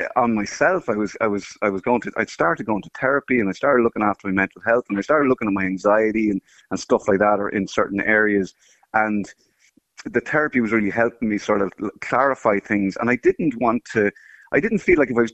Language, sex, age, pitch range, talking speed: English, male, 30-49, 100-125 Hz, 245 wpm